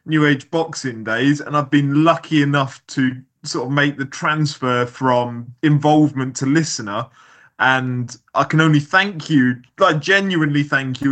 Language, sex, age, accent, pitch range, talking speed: English, male, 20-39, British, 140-175 Hz, 155 wpm